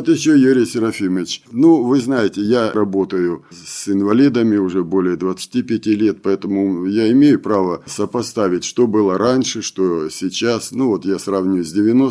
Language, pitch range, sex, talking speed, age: Russian, 100-140 Hz, male, 145 wpm, 50-69